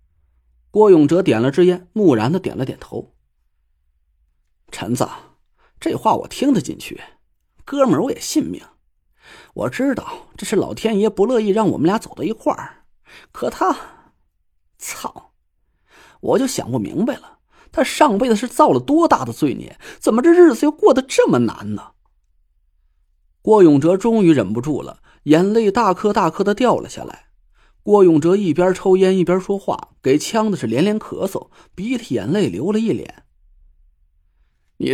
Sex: male